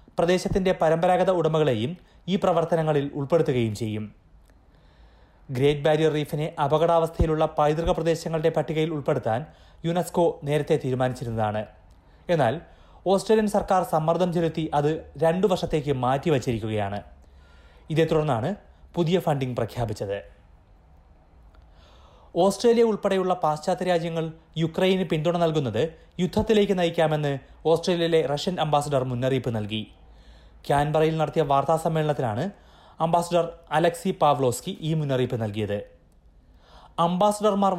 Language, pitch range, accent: Malayalam, 115-175 Hz, native